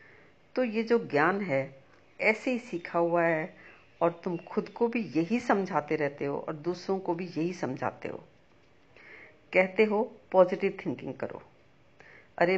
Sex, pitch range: female, 155-200 Hz